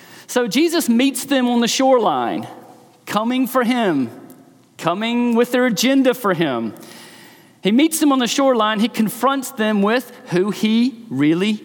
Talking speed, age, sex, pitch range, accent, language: 150 wpm, 40-59, male, 175-260 Hz, American, English